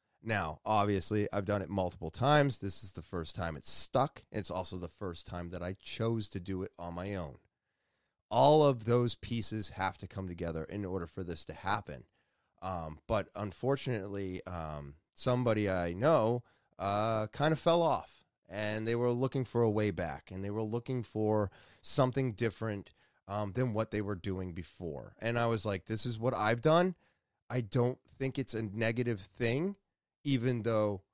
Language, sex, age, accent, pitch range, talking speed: English, male, 30-49, American, 100-140 Hz, 180 wpm